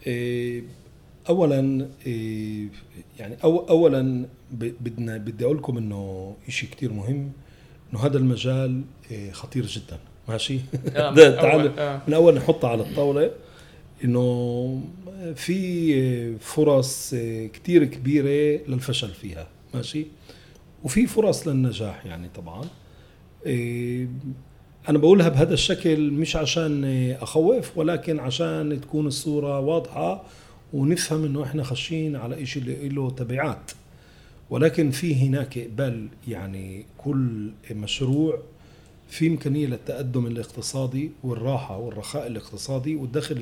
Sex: male